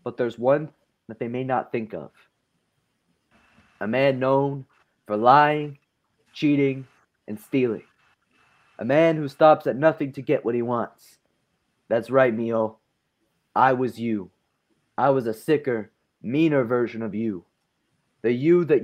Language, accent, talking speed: English, American, 145 wpm